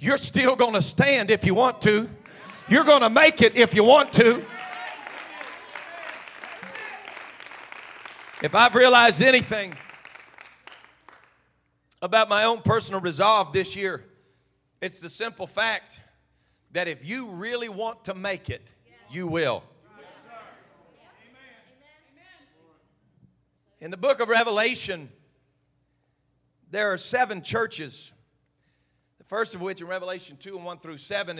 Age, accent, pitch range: 40-59, American, 165-230 Hz